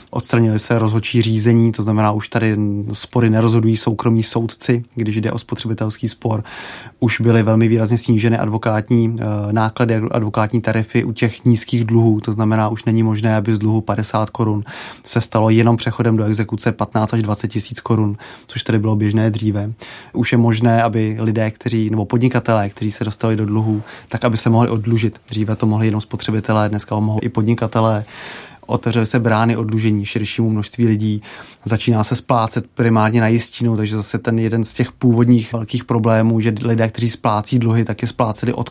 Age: 20-39